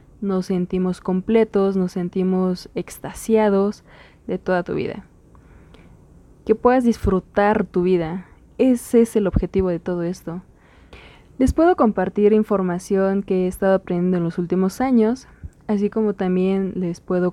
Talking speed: 135 wpm